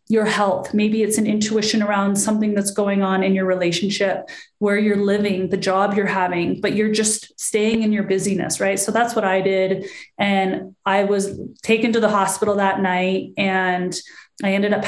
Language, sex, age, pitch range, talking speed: English, female, 30-49, 185-215 Hz, 190 wpm